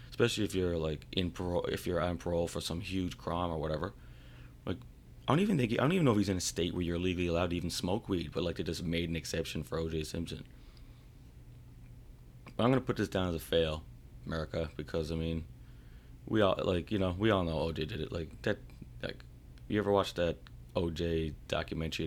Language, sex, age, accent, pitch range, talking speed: English, male, 30-49, American, 75-95 Hz, 225 wpm